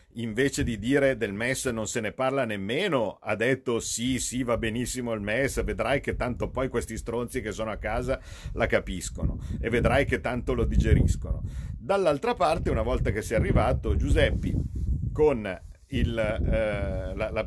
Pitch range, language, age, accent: 95-120 Hz, Italian, 50-69, native